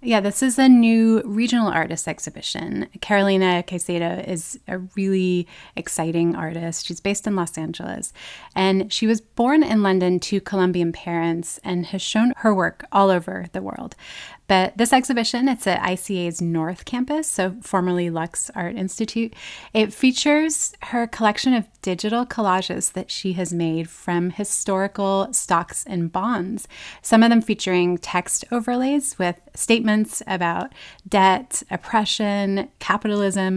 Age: 30-49